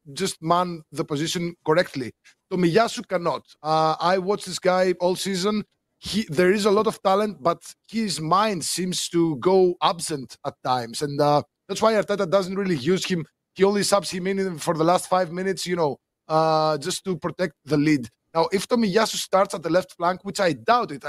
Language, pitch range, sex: English, 155-195 Hz, male